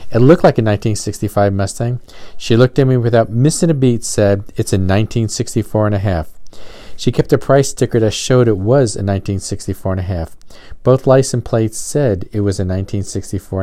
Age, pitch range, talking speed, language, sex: 50-69, 100-120 Hz, 190 wpm, English, male